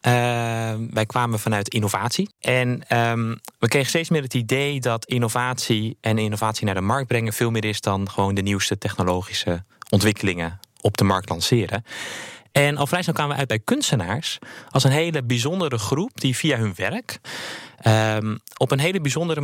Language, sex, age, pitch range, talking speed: Dutch, male, 20-39, 110-135 Hz, 170 wpm